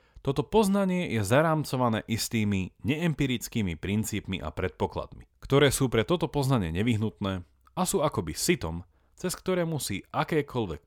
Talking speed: 125 wpm